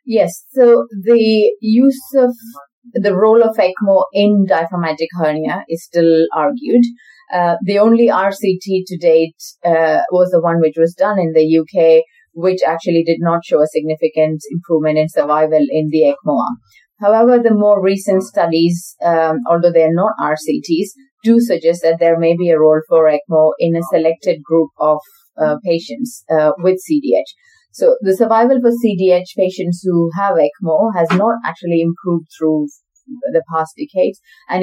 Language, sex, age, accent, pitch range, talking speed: English, female, 30-49, Indian, 160-215 Hz, 160 wpm